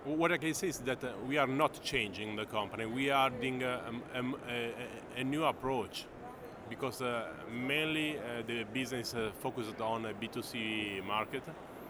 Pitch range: 110-130 Hz